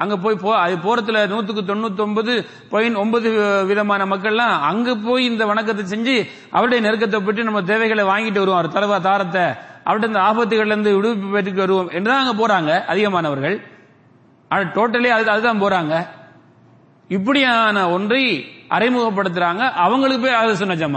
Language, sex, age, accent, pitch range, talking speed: English, male, 30-49, Indian, 170-220 Hz, 145 wpm